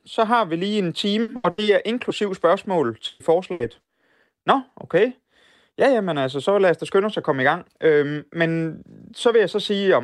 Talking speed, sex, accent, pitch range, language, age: 215 wpm, male, native, 135-180 Hz, Danish, 30-49